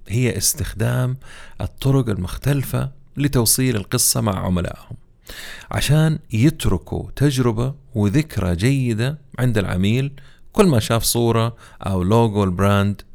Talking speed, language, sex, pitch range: 100 wpm, Arabic, male, 95-125 Hz